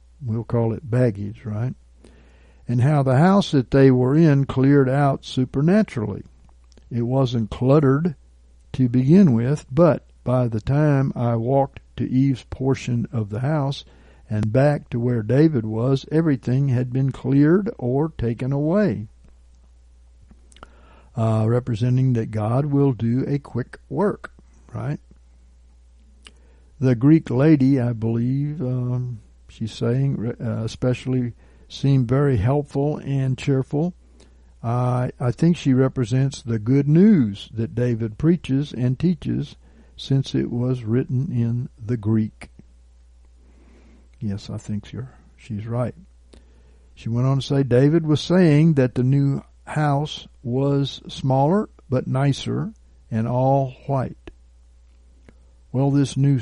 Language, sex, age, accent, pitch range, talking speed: English, male, 60-79, American, 105-135 Hz, 125 wpm